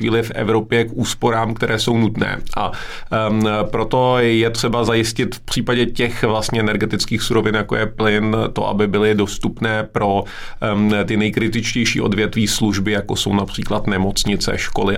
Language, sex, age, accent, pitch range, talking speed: Czech, male, 30-49, native, 105-115 Hz, 150 wpm